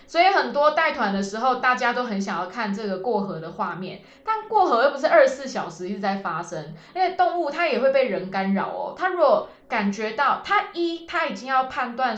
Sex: female